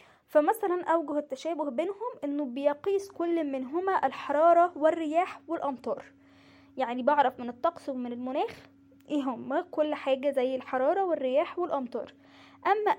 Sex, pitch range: female, 270-320 Hz